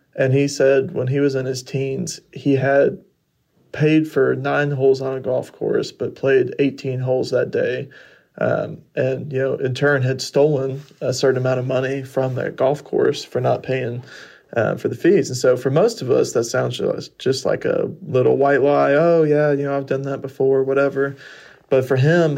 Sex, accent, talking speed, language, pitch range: male, American, 200 wpm, English, 130-140 Hz